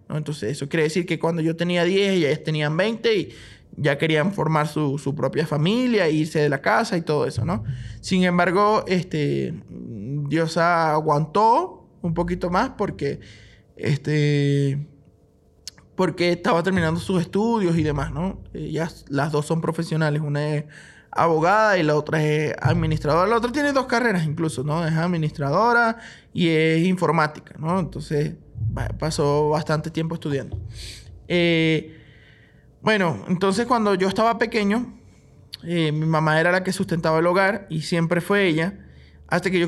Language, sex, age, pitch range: Spanish, male, 20-39, 150-195 Hz